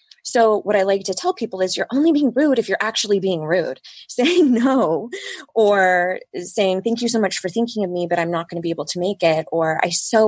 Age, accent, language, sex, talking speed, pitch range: 20-39, American, English, female, 245 wpm, 170-210 Hz